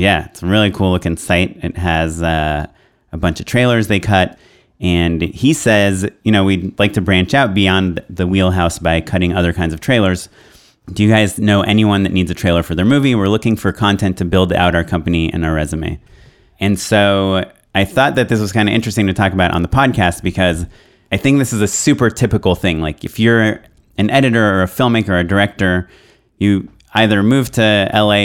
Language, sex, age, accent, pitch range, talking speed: English, male, 30-49, American, 90-105 Hz, 210 wpm